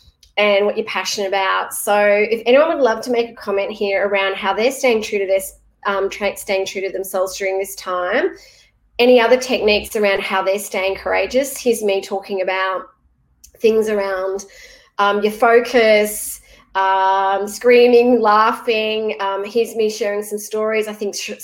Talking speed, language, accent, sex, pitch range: 160 wpm, English, Australian, female, 205-250 Hz